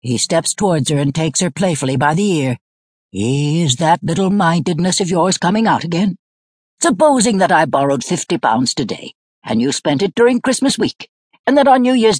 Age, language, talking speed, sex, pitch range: 60-79, English, 185 wpm, female, 140-205 Hz